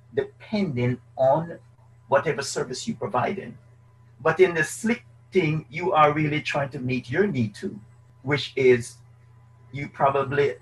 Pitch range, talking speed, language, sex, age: 120-165 Hz, 140 wpm, English, male, 50-69